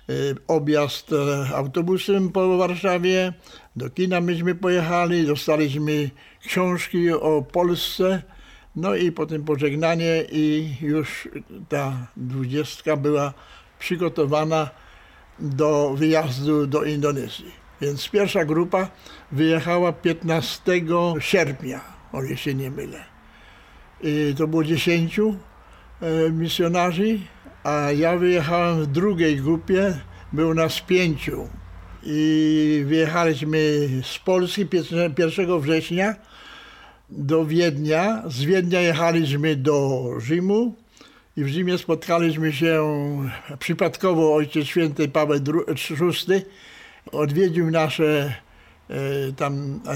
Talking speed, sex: 90 wpm, male